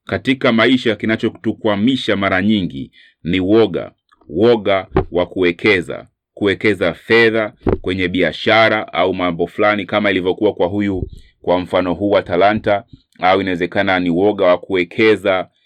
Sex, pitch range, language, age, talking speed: male, 90-110 Hz, Swahili, 30-49, 125 wpm